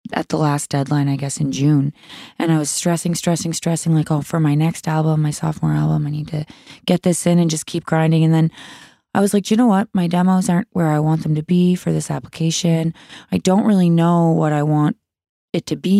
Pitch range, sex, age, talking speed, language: 150-175 Hz, female, 20-39, 235 wpm, English